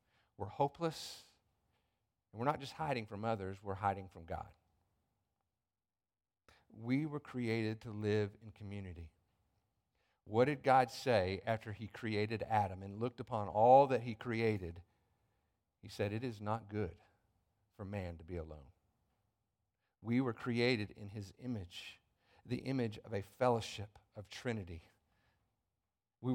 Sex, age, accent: male, 50-69, American